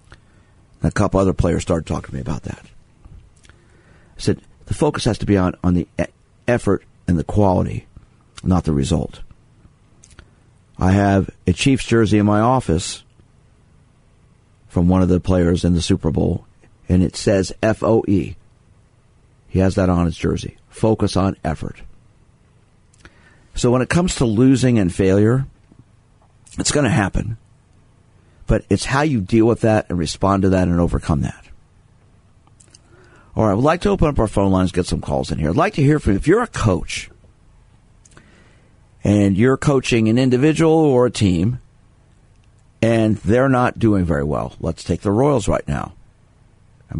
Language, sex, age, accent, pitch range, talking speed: English, male, 50-69, American, 90-115 Hz, 165 wpm